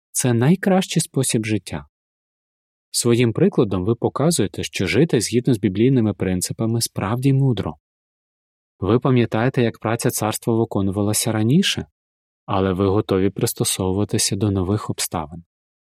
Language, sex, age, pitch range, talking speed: Ukrainian, male, 20-39, 100-135 Hz, 115 wpm